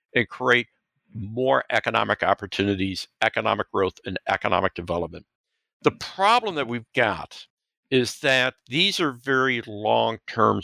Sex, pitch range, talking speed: male, 110-145 Hz, 120 wpm